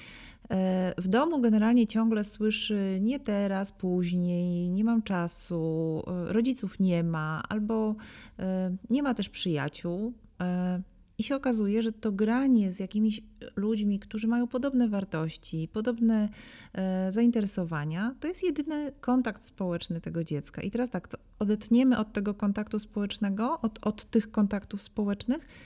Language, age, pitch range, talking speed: Polish, 30-49, 180-225 Hz, 125 wpm